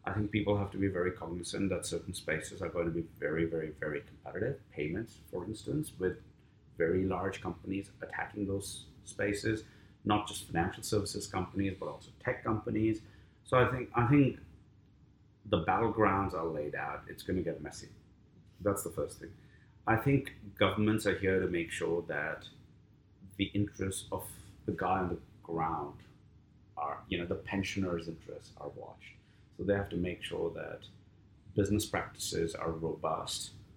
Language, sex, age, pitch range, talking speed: English, male, 30-49, 90-105 Hz, 165 wpm